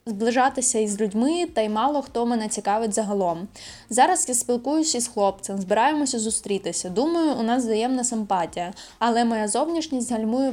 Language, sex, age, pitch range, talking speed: Ukrainian, female, 10-29, 220-265 Hz, 150 wpm